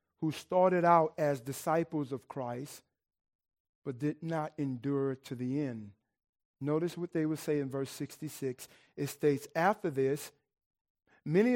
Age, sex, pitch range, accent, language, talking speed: 50-69, male, 130-170 Hz, American, English, 140 wpm